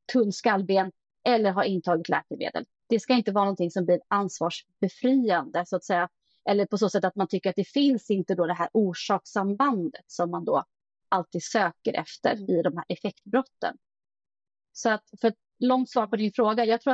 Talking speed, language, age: 185 wpm, Swedish, 30-49